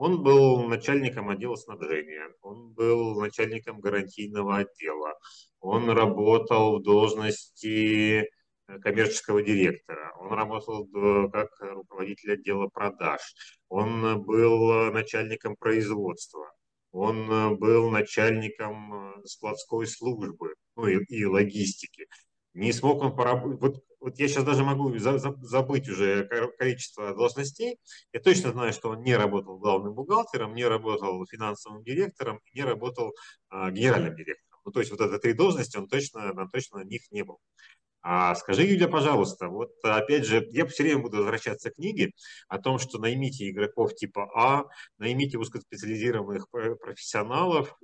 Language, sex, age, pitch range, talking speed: Russian, male, 30-49, 105-130 Hz, 130 wpm